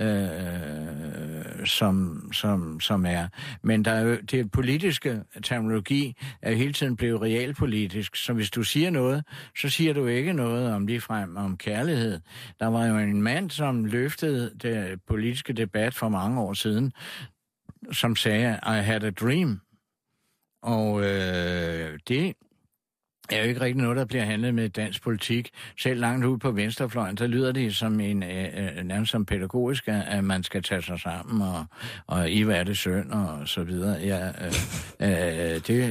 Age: 60-79